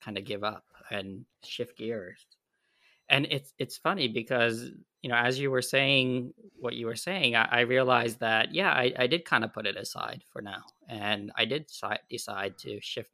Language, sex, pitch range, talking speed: English, male, 115-135 Hz, 200 wpm